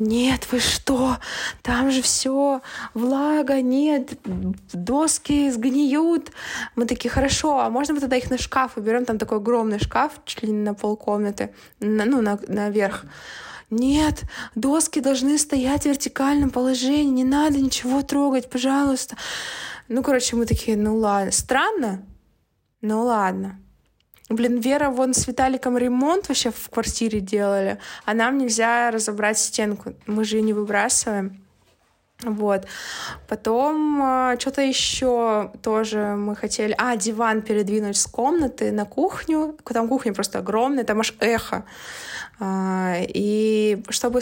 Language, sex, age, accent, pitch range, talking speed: Russian, female, 20-39, native, 215-275 Hz, 135 wpm